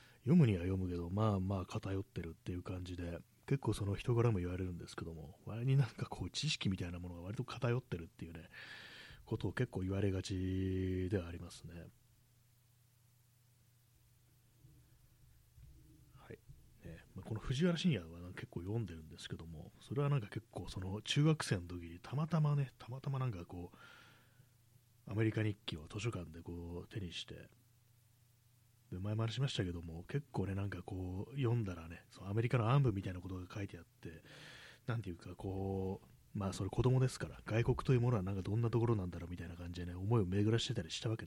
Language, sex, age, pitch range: Japanese, male, 30-49, 90-120 Hz